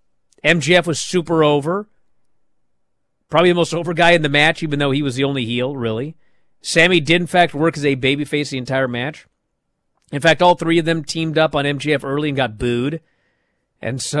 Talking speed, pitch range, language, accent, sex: 200 wpm, 130-170 Hz, English, American, male